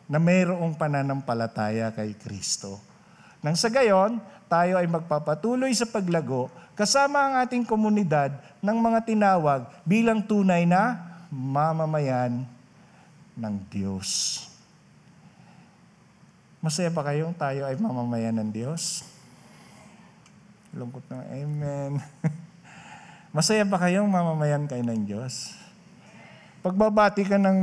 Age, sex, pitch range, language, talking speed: 50-69, male, 125-195 Hz, Filipino, 100 wpm